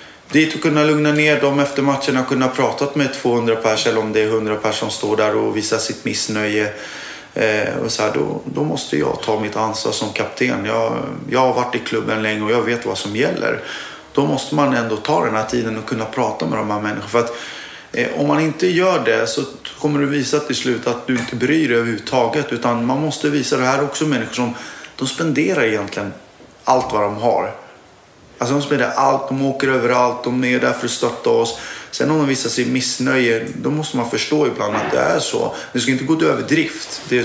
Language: English